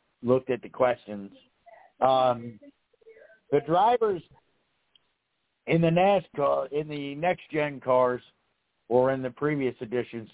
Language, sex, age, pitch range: English, male, 60-79, 115-145 Hz